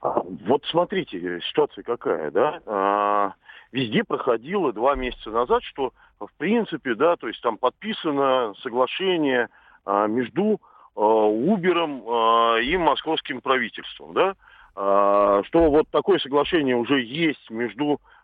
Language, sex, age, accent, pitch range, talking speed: Russian, male, 40-59, native, 110-180 Hz, 105 wpm